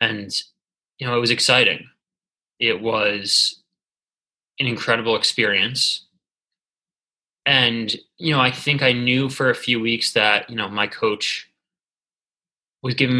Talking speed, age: 130 wpm, 20-39